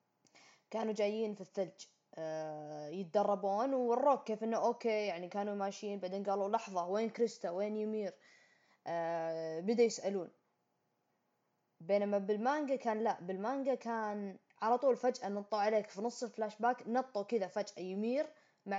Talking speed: 135 wpm